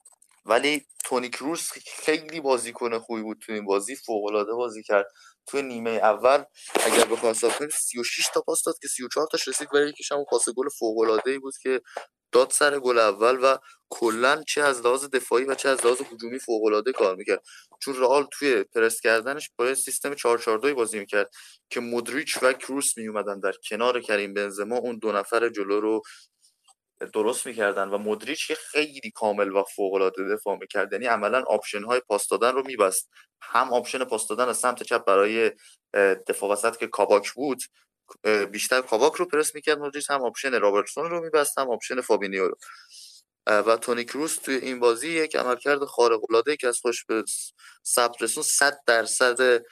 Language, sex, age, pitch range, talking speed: Persian, male, 20-39, 115-145 Hz, 170 wpm